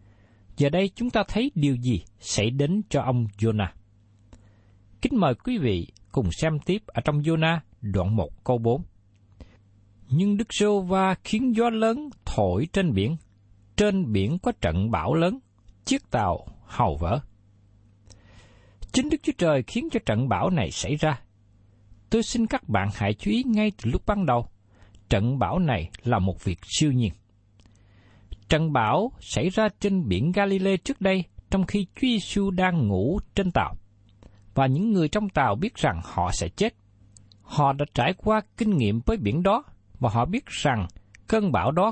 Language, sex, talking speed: Vietnamese, male, 170 wpm